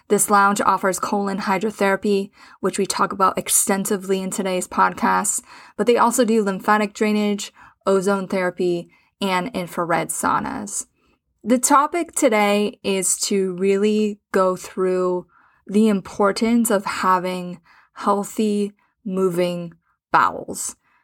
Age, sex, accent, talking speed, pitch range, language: 20-39, female, American, 110 wpm, 185-220 Hz, English